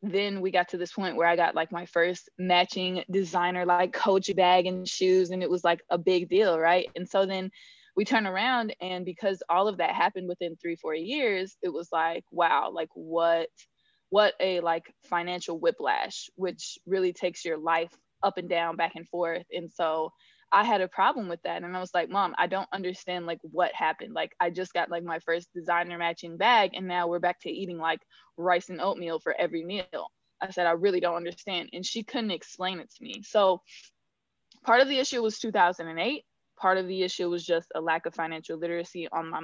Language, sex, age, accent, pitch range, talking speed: English, female, 20-39, American, 170-195 Hz, 215 wpm